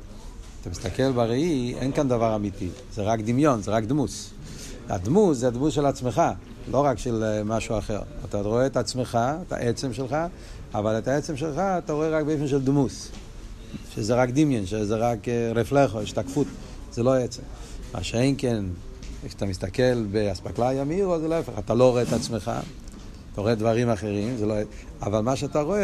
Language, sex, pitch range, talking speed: Hebrew, male, 105-140 Hz, 175 wpm